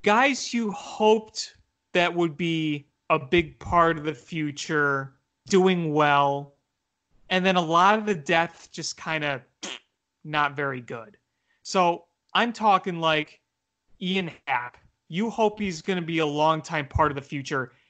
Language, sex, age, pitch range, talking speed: English, male, 30-49, 150-200 Hz, 150 wpm